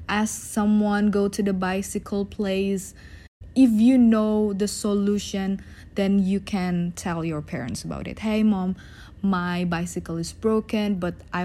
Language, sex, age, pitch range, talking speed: English, female, 20-39, 170-205 Hz, 145 wpm